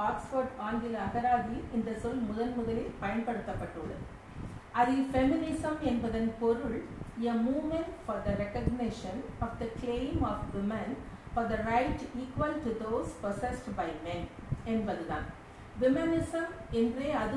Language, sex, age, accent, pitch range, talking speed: Tamil, female, 50-69, native, 220-275 Hz, 95 wpm